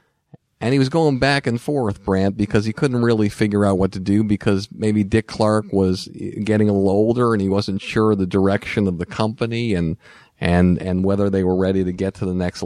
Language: English